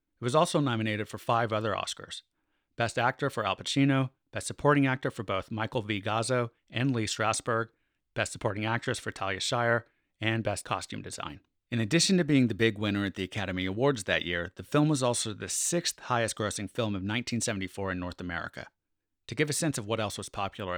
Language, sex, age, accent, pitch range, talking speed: English, male, 30-49, American, 100-130 Hz, 200 wpm